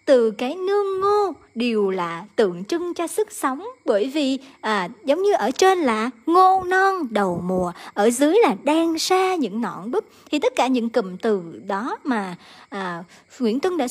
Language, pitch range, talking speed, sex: Vietnamese, 230-360 Hz, 185 wpm, male